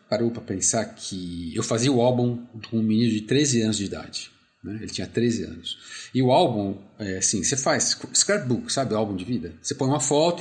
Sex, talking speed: male, 220 wpm